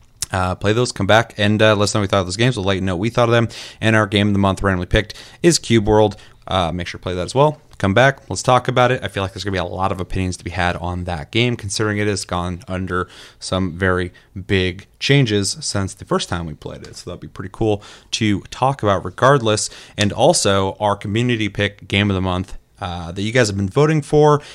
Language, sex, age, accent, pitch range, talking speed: English, male, 30-49, American, 95-115 Hz, 255 wpm